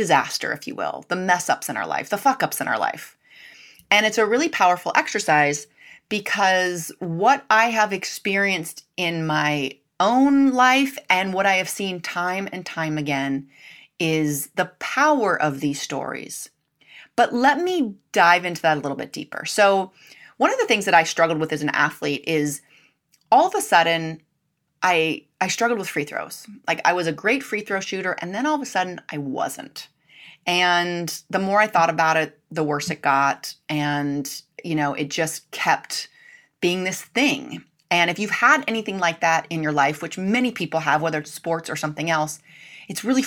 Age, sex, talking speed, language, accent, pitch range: 30-49, female, 190 wpm, English, American, 155-210 Hz